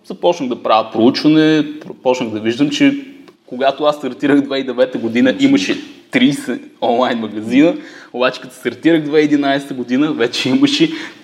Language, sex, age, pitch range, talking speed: Bulgarian, male, 20-39, 115-160 Hz, 130 wpm